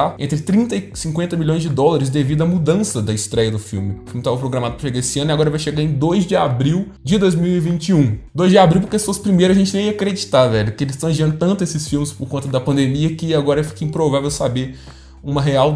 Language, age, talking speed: Portuguese, 20-39, 240 wpm